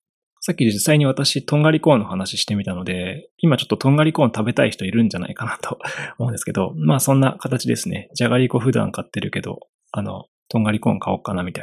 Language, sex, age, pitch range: Japanese, male, 20-39, 105-145 Hz